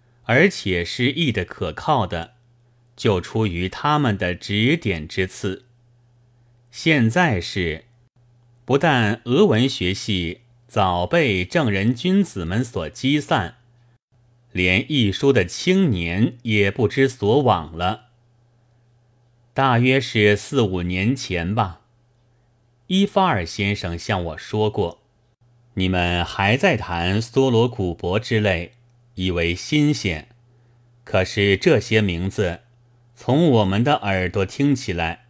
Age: 30-49